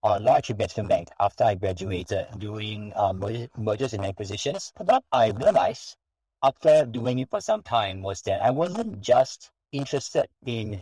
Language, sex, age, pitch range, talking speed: English, male, 50-69, 105-130 Hz, 160 wpm